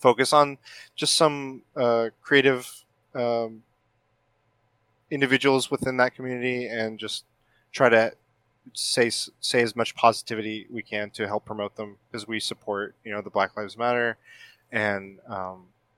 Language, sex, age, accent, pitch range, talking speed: English, male, 20-39, American, 105-125 Hz, 140 wpm